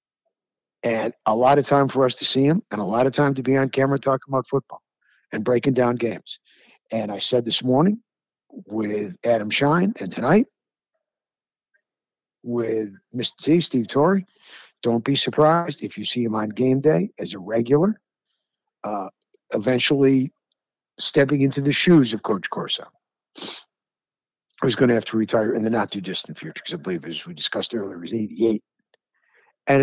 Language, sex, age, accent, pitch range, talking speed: English, male, 60-79, American, 120-160 Hz, 170 wpm